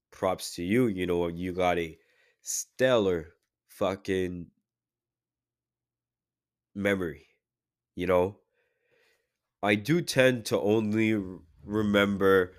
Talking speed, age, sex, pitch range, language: 90 wpm, 20-39, male, 90-105 Hz, English